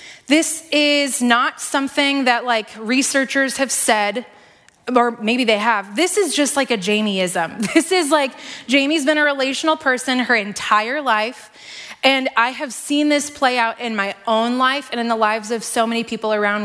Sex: female